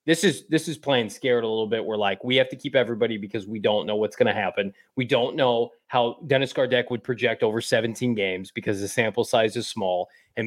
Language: English